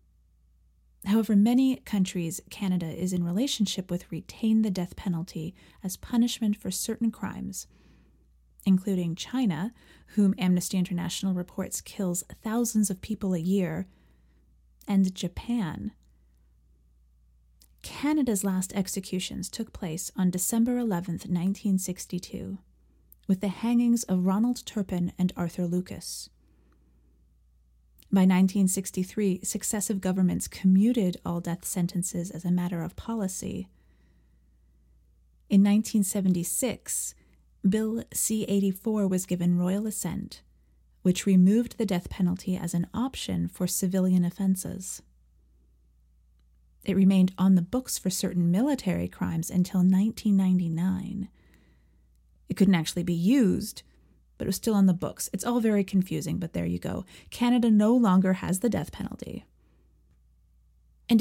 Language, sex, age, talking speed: English, female, 30-49, 120 wpm